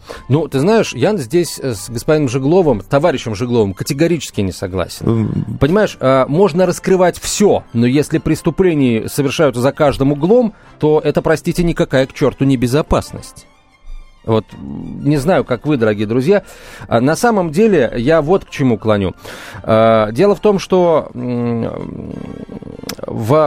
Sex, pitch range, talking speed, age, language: male, 120-160 Hz, 130 wpm, 30-49, Russian